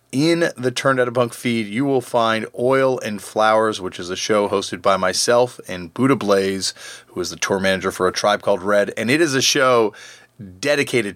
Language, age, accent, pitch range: English, 30-49, American, 105-135 Hz